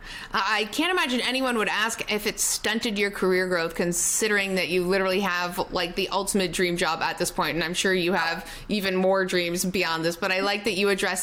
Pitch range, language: 180-210 Hz, English